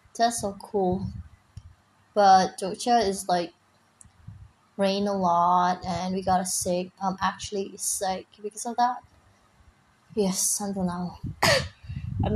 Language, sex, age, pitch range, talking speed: Indonesian, female, 20-39, 175-230 Hz, 125 wpm